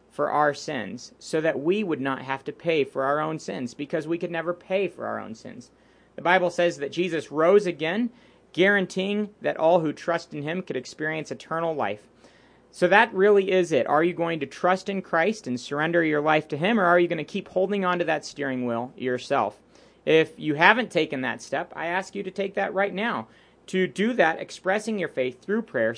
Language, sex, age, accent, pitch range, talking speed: English, male, 40-59, American, 140-185 Hz, 220 wpm